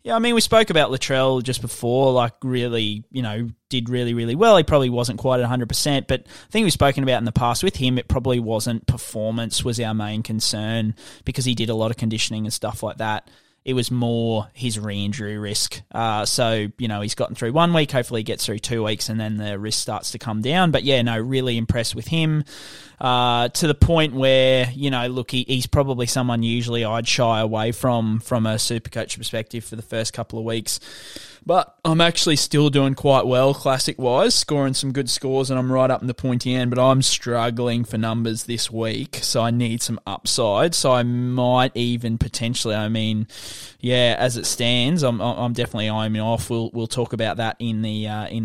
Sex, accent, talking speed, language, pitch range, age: male, Australian, 215 wpm, English, 110-130 Hz, 20-39